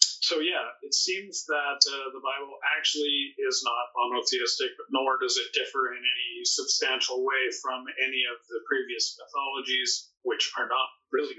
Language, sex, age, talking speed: English, male, 40-59, 160 wpm